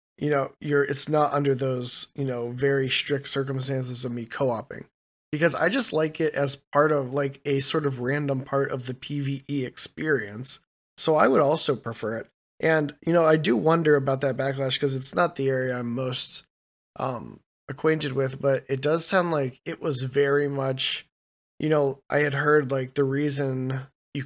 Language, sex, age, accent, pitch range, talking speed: English, male, 20-39, American, 130-145 Hz, 190 wpm